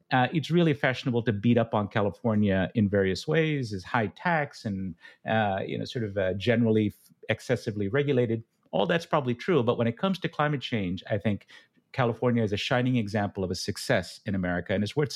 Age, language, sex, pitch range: 50-69, English, male, 105-130 Hz